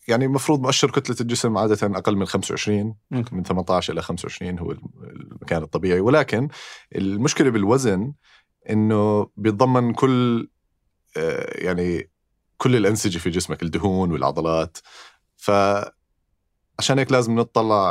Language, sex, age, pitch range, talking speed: Arabic, male, 30-49, 90-120 Hz, 110 wpm